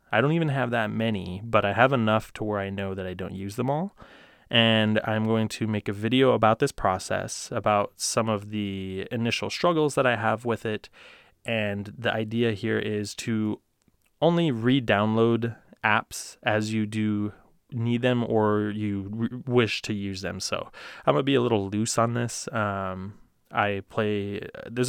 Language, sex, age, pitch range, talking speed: English, male, 20-39, 100-115 Hz, 180 wpm